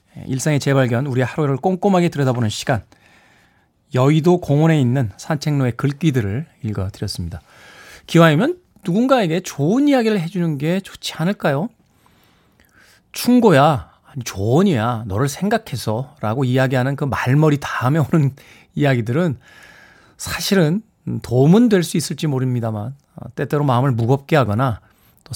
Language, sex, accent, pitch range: Korean, male, native, 120-170 Hz